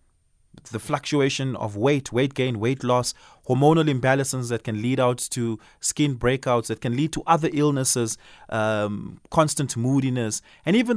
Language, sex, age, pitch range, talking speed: English, male, 30-49, 110-160 Hz, 155 wpm